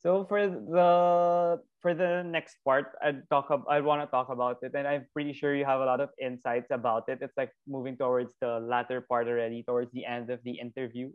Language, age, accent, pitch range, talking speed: Filipino, 20-39, native, 125-140 Hz, 220 wpm